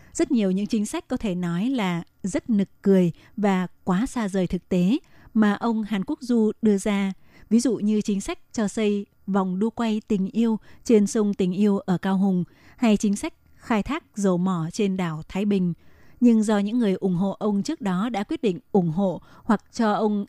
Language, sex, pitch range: Vietnamese, female, 190-230 Hz